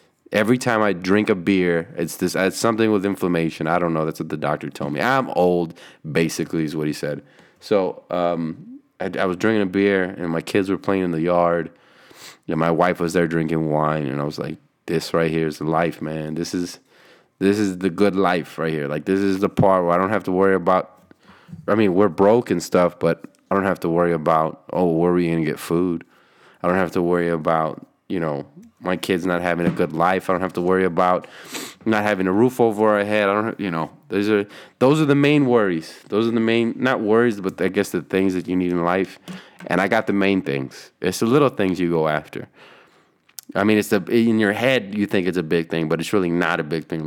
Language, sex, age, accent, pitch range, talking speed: English, male, 20-39, American, 85-105 Hz, 240 wpm